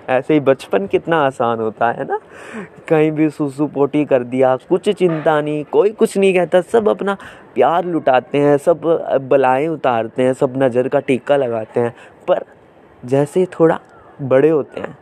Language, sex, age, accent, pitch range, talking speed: Hindi, male, 20-39, native, 135-170 Hz, 170 wpm